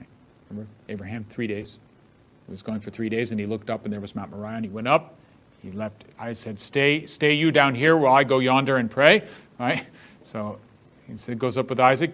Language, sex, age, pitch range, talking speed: English, male, 40-59, 120-170 Hz, 220 wpm